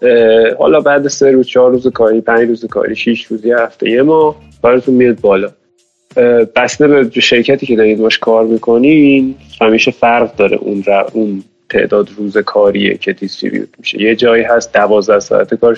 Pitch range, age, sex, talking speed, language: 105-135 Hz, 20-39, male, 155 wpm, Persian